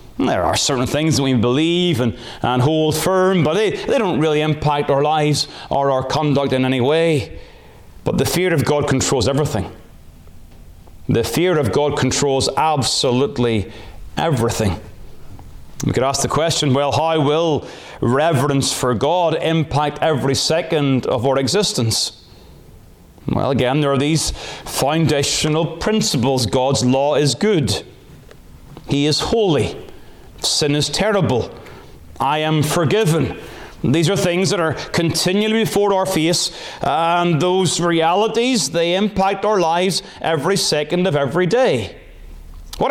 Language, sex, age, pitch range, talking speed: English, male, 30-49, 135-175 Hz, 135 wpm